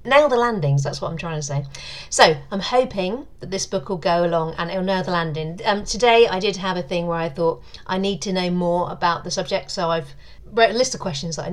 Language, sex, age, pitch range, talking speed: English, female, 40-59, 160-200 Hz, 260 wpm